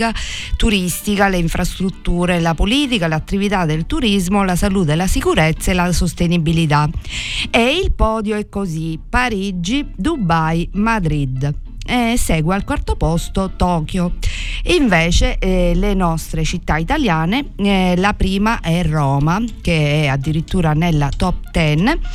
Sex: female